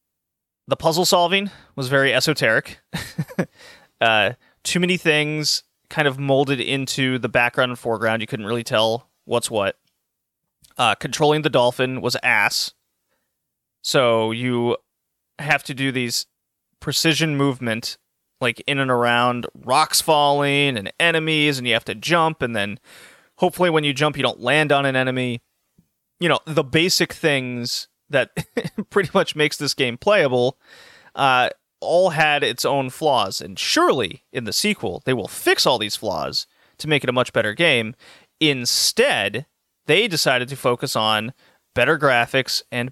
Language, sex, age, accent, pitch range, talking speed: English, male, 30-49, American, 125-155 Hz, 150 wpm